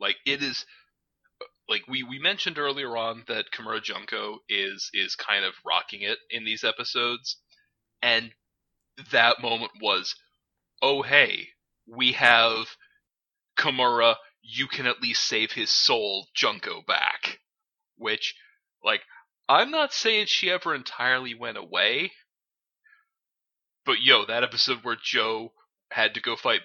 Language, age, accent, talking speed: English, 30-49, American, 135 wpm